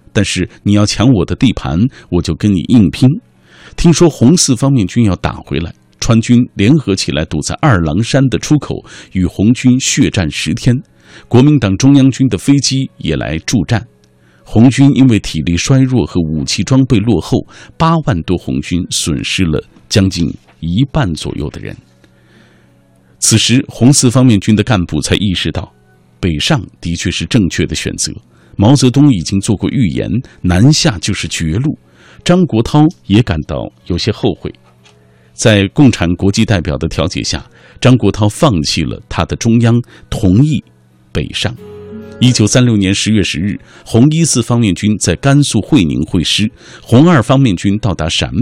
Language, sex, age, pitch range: Chinese, male, 50-69, 85-130 Hz